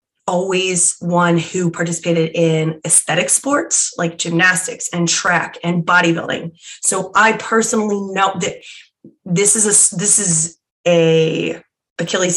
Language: English